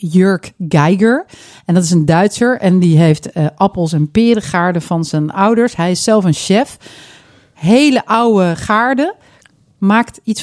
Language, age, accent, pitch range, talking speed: Dutch, 40-59, Dutch, 170-215 Hz, 155 wpm